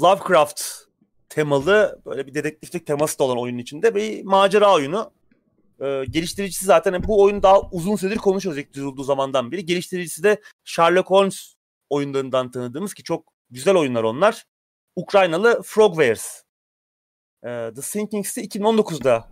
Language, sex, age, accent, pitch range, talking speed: Turkish, male, 30-49, native, 130-195 Hz, 135 wpm